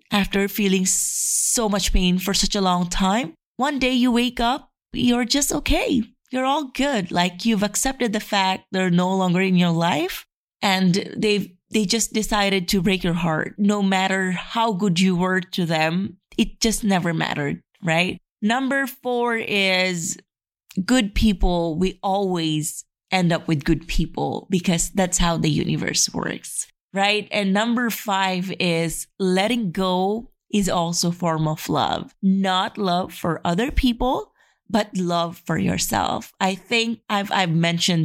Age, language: 20-39, English